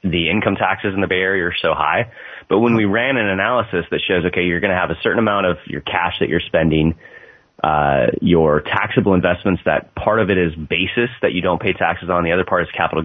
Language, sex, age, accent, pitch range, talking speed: English, male, 30-49, American, 85-105 Hz, 245 wpm